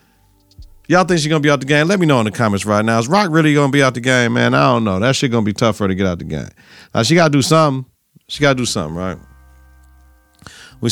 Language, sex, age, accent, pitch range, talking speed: English, male, 40-59, American, 105-145 Hz, 310 wpm